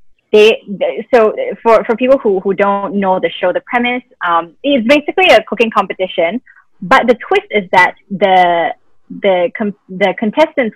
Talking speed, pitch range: 160 wpm, 185-260 Hz